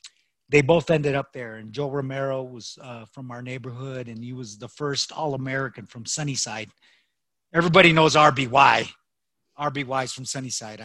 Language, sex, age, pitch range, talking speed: English, male, 40-59, 115-140 Hz, 160 wpm